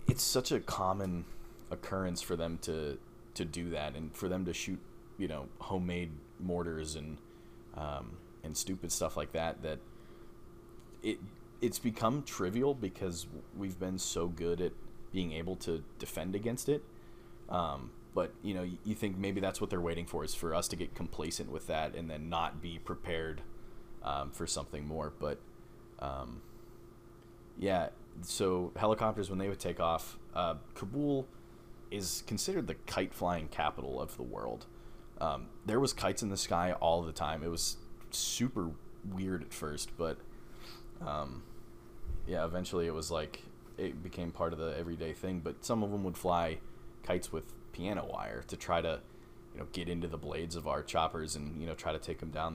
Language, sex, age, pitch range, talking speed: English, male, 30-49, 80-105 Hz, 175 wpm